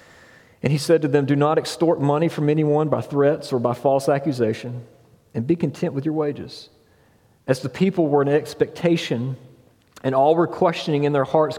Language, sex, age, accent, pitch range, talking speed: English, male, 40-59, American, 120-155 Hz, 185 wpm